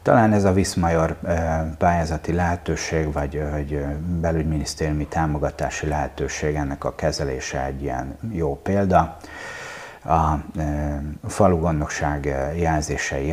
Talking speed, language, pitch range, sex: 95 wpm, Hungarian, 75-85 Hz, male